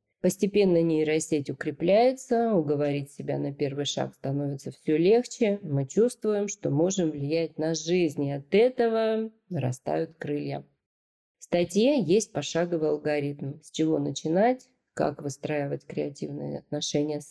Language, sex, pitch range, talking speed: Russian, female, 150-185 Hz, 125 wpm